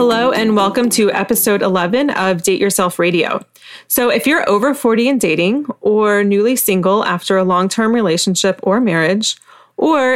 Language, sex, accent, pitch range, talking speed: English, female, American, 185-230 Hz, 160 wpm